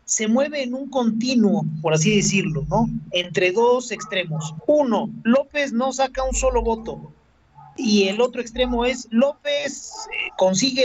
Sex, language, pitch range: male, Spanish, 200-265 Hz